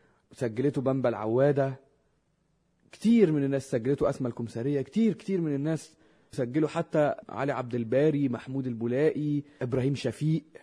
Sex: male